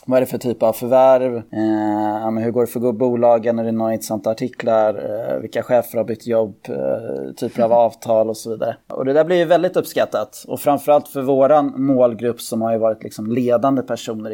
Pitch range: 120-140 Hz